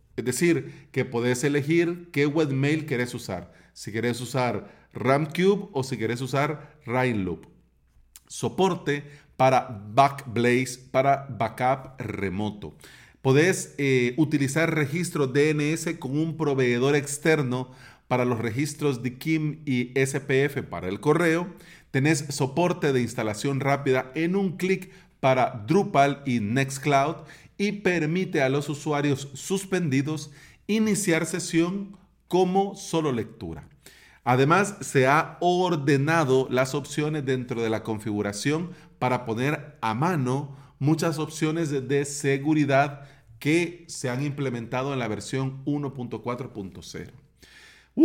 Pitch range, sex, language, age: 125-160 Hz, male, Spanish, 40-59